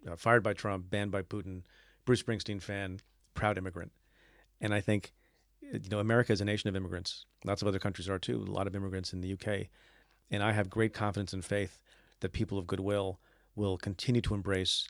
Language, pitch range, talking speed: English, 95-115 Hz, 205 wpm